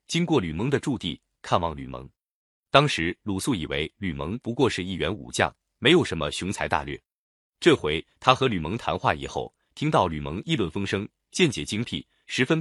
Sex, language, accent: male, Chinese, native